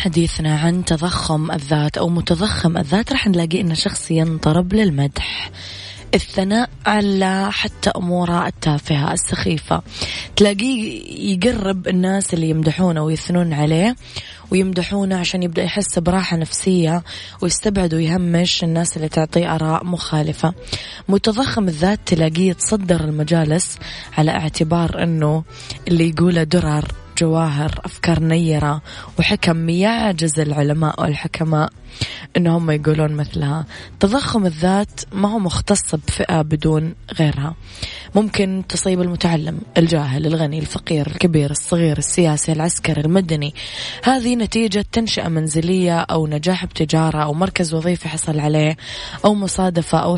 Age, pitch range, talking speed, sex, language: 20-39, 155-185 Hz, 115 wpm, female, Arabic